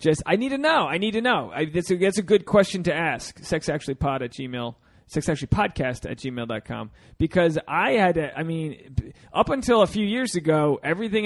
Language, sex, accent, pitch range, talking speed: English, male, American, 135-185 Hz, 215 wpm